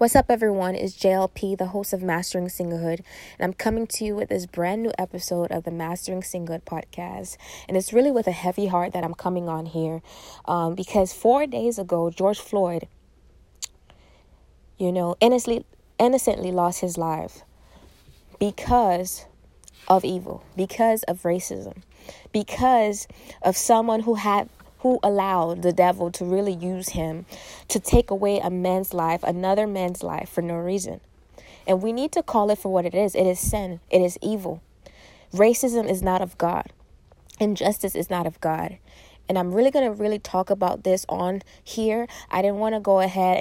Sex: female